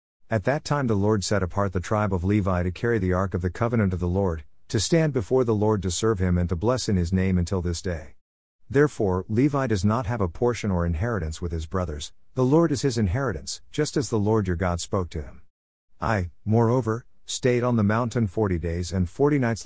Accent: American